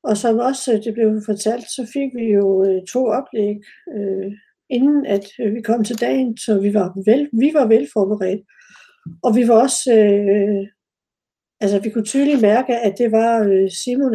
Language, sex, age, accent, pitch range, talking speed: Danish, female, 60-79, native, 210-265 Hz, 155 wpm